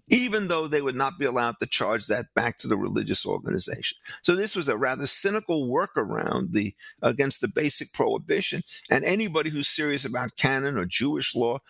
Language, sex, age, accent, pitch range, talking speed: English, male, 50-69, American, 135-185 Hz, 190 wpm